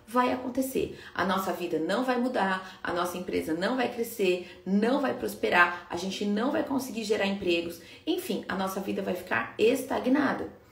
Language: Portuguese